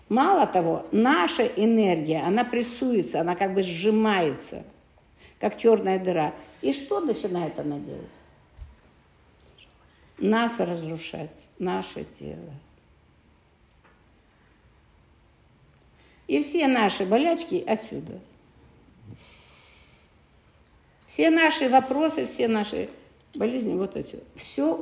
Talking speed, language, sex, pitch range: 85 wpm, Russian, female, 180-265 Hz